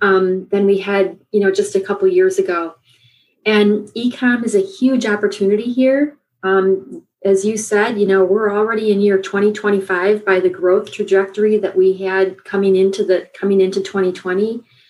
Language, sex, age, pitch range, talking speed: English, female, 30-49, 195-225 Hz, 175 wpm